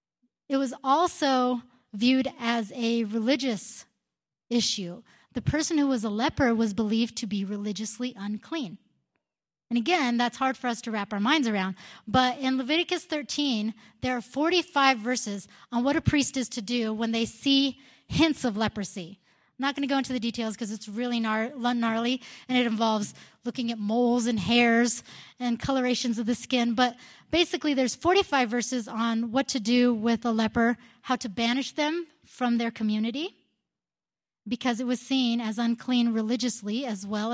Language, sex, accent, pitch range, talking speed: English, female, American, 230-265 Hz, 170 wpm